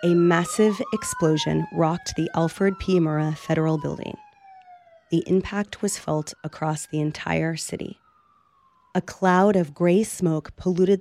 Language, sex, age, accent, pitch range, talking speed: English, female, 30-49, American, 155-190 Hz, 130 wpm